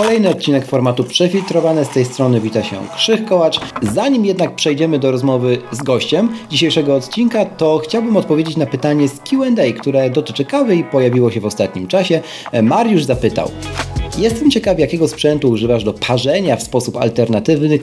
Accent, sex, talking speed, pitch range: native, male, 160 wpm, 125-160 Hz